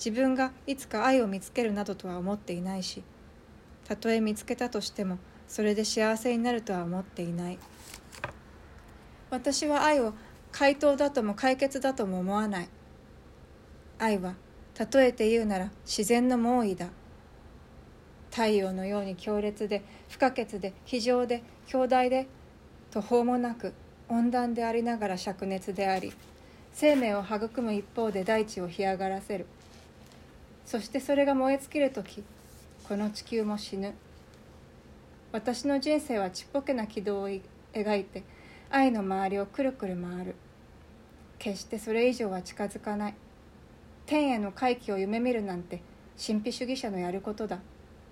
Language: Japanese